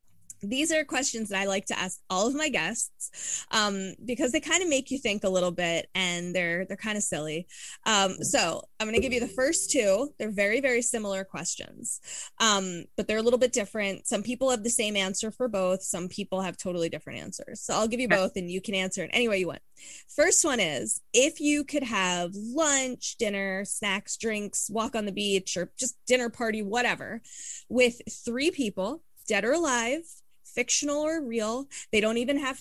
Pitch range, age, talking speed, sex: 190-260 Hz, 20-39, 205 wpm, female